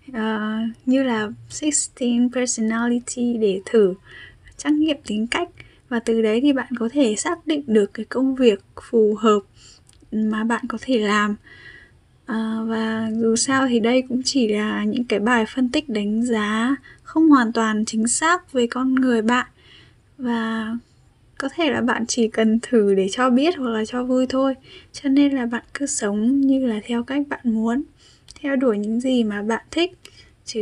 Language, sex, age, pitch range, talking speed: Vietnamese, female, 10-29, 220-255 Hz, 175 wpm